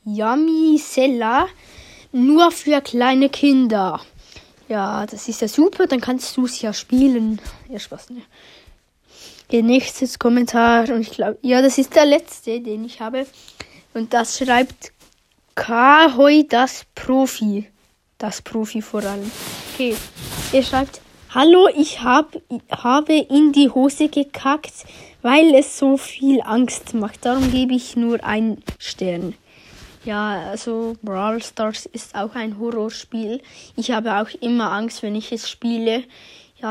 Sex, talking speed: female, 140 wpm